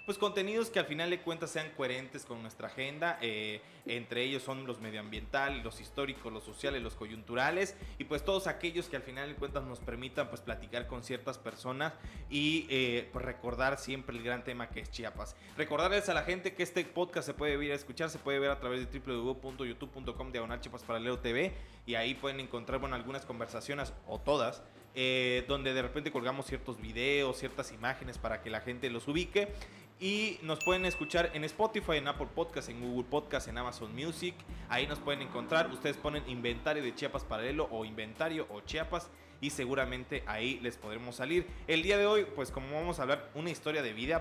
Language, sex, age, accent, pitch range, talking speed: Spanish, male, 20-39, Mexican, 120-155 Hz, 200 wpm